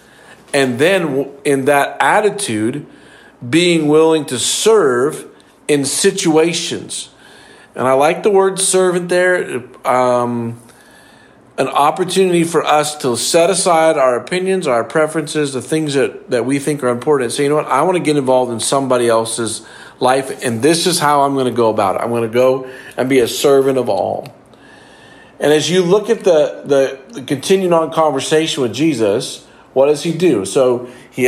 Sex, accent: male, American